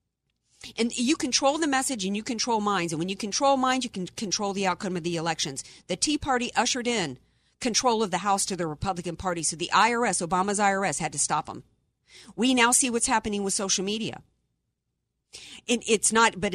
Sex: female